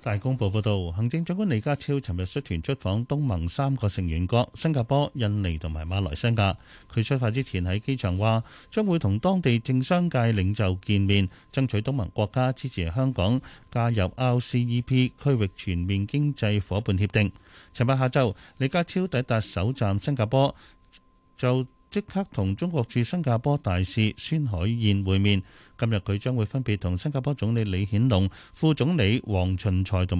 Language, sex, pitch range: Chinese, male, 95-130 Hz